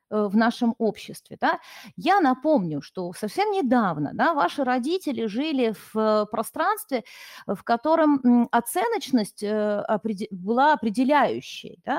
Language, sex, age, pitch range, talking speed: Russian, female, 30-49, 220-305 Hz, 90 wpm